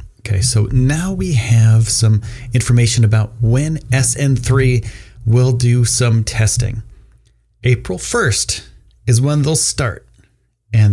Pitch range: 105-125 Hz